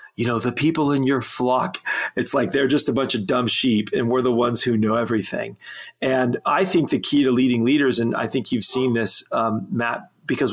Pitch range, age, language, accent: 115-135 Hz, 40-59, English, American